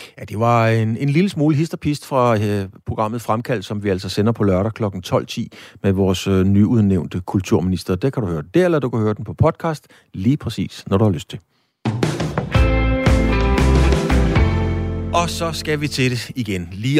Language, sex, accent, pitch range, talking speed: Danish, male, native, 95-135 Hz, 180 wpm